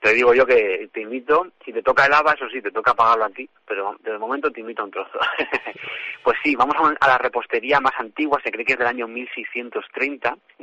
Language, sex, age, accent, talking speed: Spanish, male, 30-49, Spanish, 235 wpm